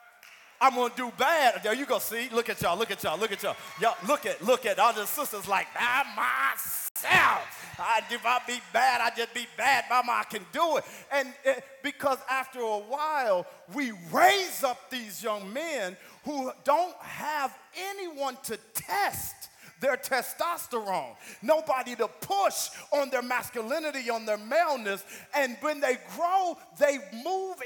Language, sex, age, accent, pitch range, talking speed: English, male, 40-59, American, 235-305 Hz, 160 wpm